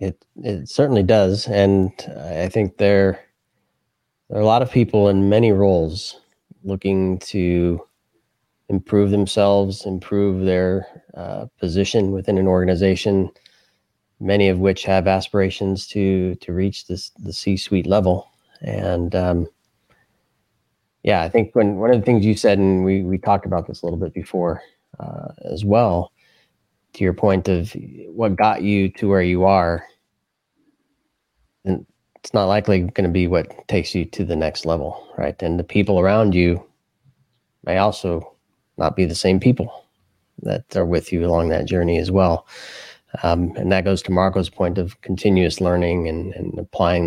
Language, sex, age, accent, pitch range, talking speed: English, male, 20-39, American, 90-100 Hz, 160 wpm